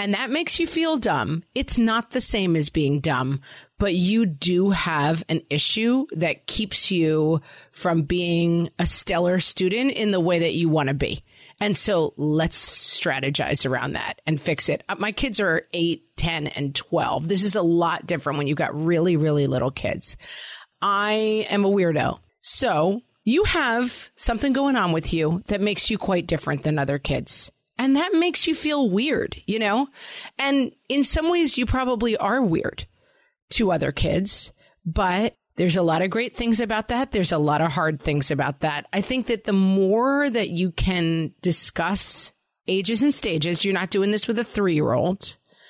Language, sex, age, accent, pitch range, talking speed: English, female, 30-49, American, 160-235 Hz, 185 wpm